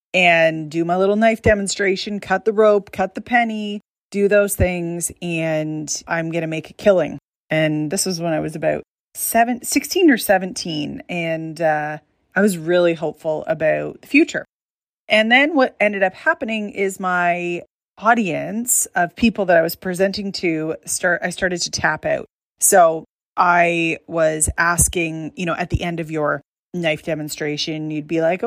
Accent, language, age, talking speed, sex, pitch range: American, English, 30-49, 165 wpm, female, 165-210 Hz